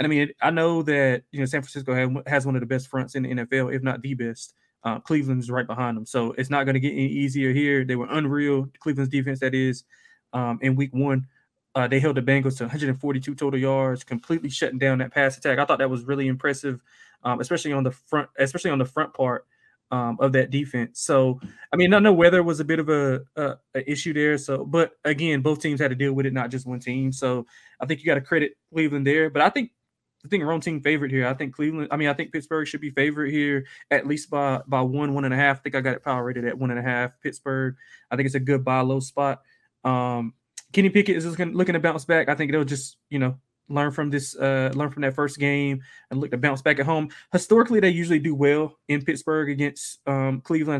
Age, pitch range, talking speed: 20-39, 130-150 Hz, 255 wpm